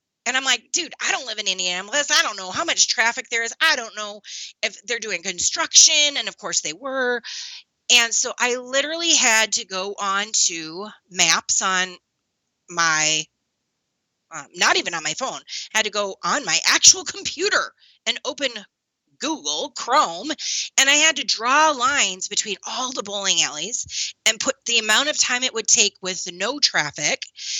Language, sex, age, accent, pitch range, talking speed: English, female, 30-49, American, 195-275 Hz, 180 wpm